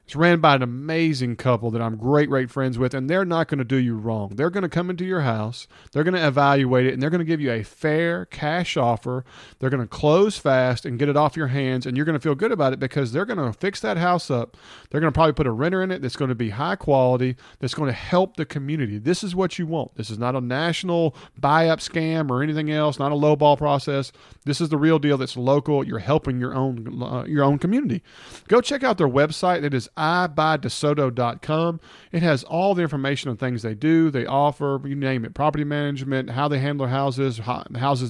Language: English